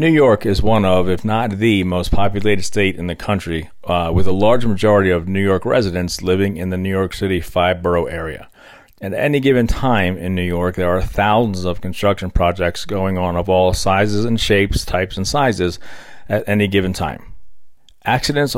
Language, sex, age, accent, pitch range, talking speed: English, male, 40-59, American, 90-110 Hz, 195 wpm